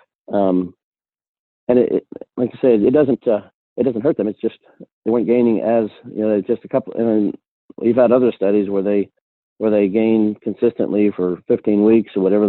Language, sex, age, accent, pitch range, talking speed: English, male, 40-59, American, 95-115 Hz, 200 wpm